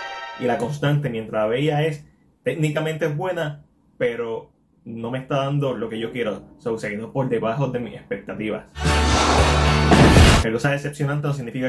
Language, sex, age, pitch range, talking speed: Spanish, male, 20-39, 120-145 Hz, 160 wpm